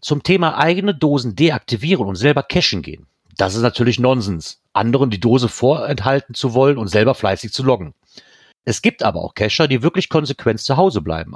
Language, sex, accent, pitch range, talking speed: German, male, German, 110-145 Hz, 185 wpm